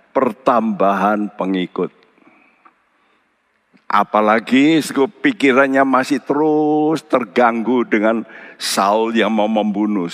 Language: Indonesian